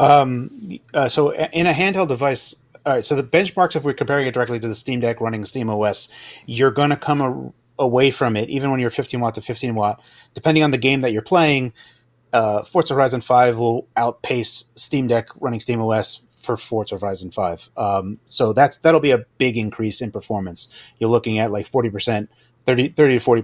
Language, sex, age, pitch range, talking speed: English, male, 30-49, 115-140 Hz, 200 wpm